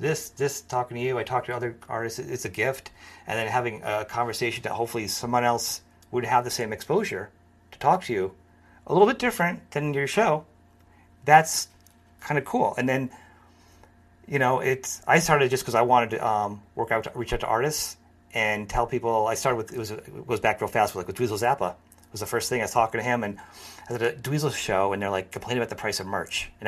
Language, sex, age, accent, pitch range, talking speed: English, male, 30-49, American, 100-130 Hz, 245 wpm